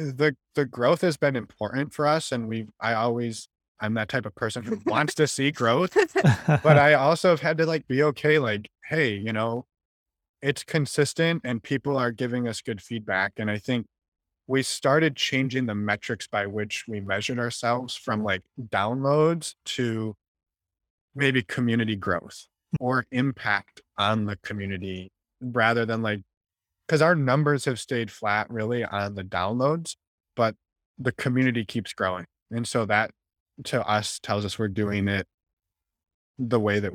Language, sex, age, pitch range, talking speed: English, male, 20-39, 100-130 Hz, 160 wpm